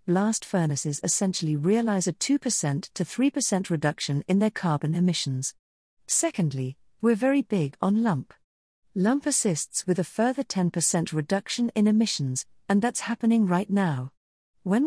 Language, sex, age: English, female, 50-69